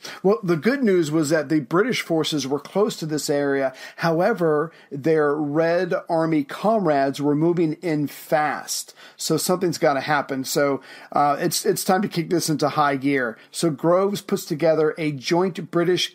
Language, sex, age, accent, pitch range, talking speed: English, male, 40-59, American, 150-175 Hz, 170 wpm